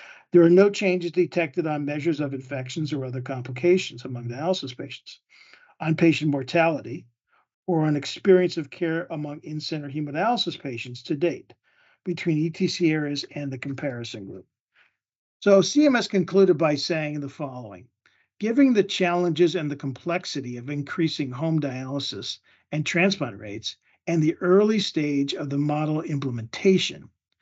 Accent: American